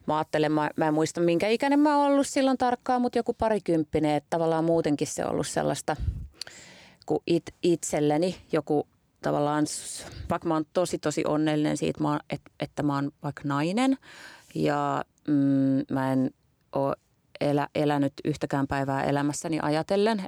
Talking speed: 145 wpm